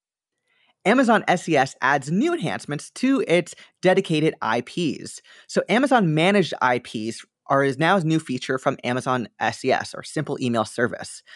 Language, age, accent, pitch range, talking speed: English, 20-39, American, 135-205 Hz, 130 wpm